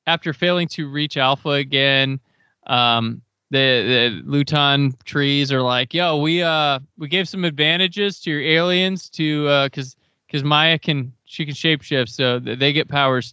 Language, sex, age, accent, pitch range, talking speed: English, male, 20-39, American, 125-155 Hz, 160 wpm